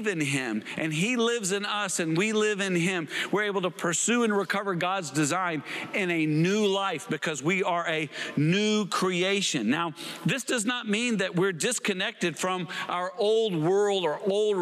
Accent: American